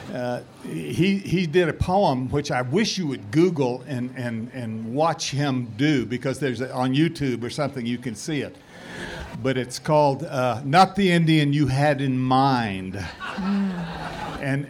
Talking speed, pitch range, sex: 170 wpm, 130-155 Hz, male